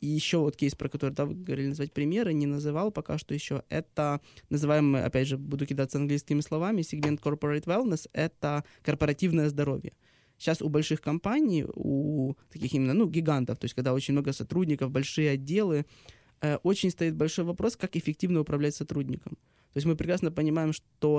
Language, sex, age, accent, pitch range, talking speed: Ukrainian, male, 20-39, native, 145-170 Hz, 180 wpm